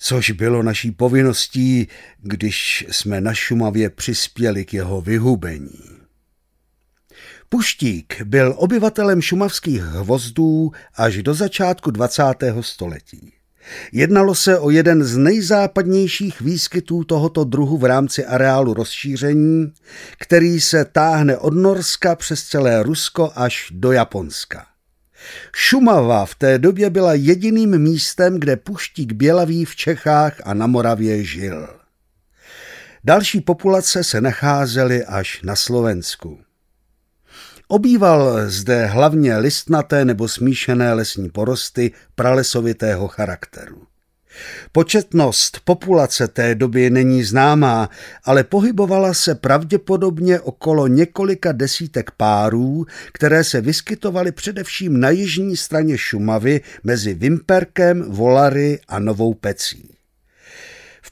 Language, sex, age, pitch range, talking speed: Czech, male, 50-69, 115-170 Hz, 105 wpm